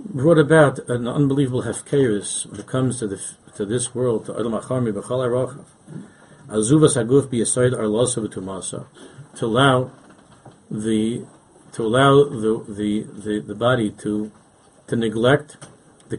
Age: 50-69